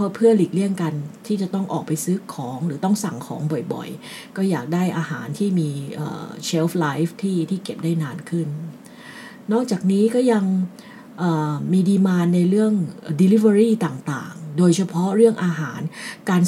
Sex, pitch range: female, 160-225 Hz